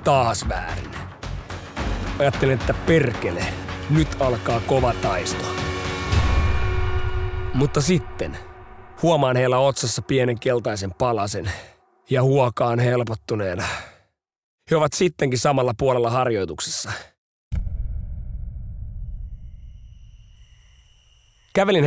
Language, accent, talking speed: Finnish, native, 75 wpm